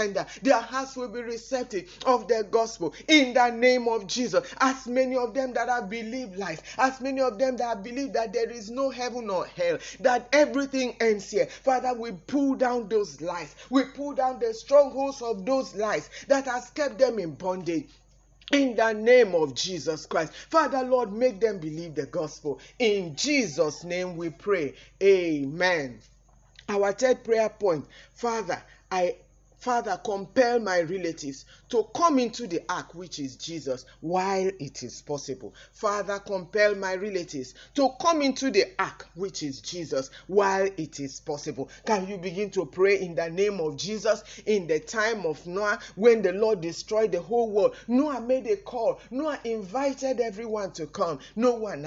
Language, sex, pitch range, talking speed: English, male, 170-255 Hz, 170 wpm